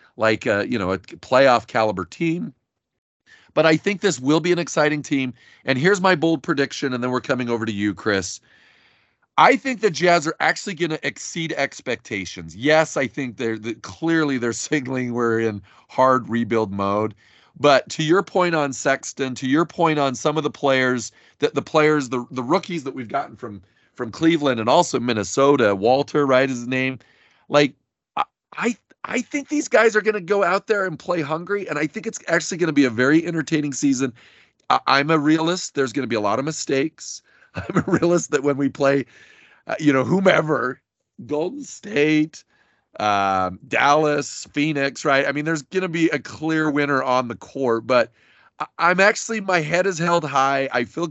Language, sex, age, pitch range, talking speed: English, male, 40-59, 125-165 Hz, 195 wpm